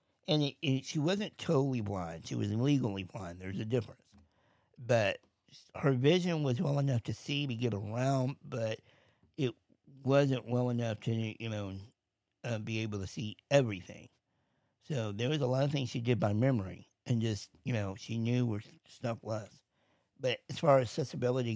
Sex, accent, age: male, American, 60-79